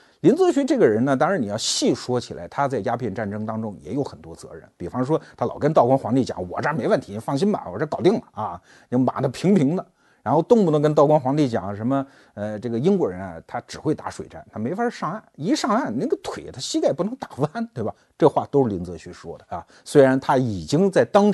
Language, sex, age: Chinese, male, 50-69